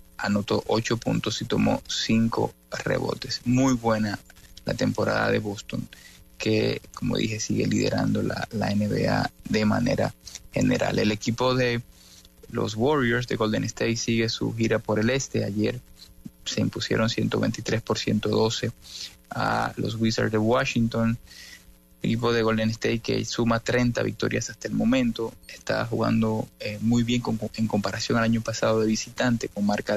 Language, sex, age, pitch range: English, male, 20-39, 105-120 Hz